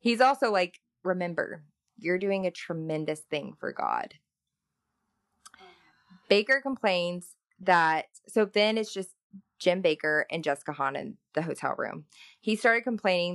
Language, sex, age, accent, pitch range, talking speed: English, female, 20-39, American, 155-205 Hz, 135 wpm